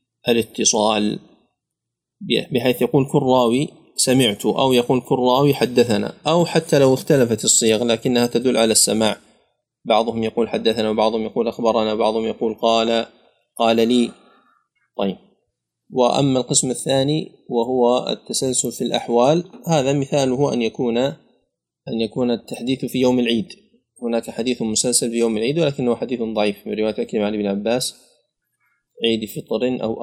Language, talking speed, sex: Arabic, 135 wpm, male